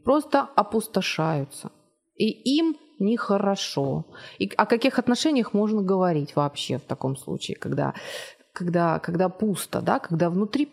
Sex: female